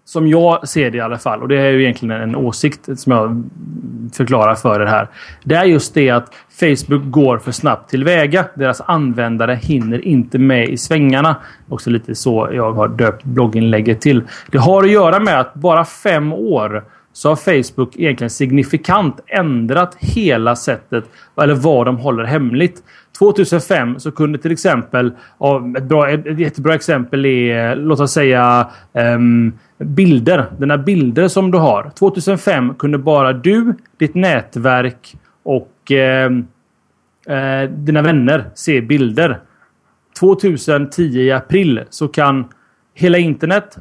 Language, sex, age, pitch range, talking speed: Swedish, male, 30-49, 125-160 Hz, 150 wpm